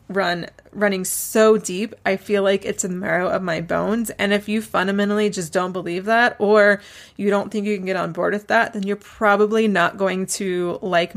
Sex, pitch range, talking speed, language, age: female, 185-215 Hz, 210 wpm, English, 20-39